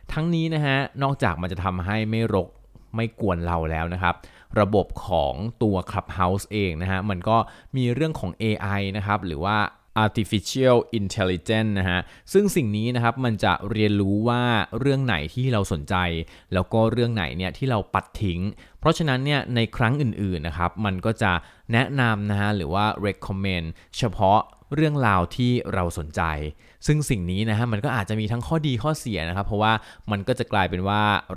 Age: 20-39